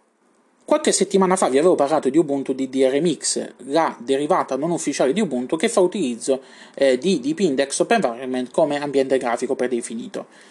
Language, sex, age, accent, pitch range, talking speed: Italian, male, 30-49, native, 130-195 Hz, 155 wpm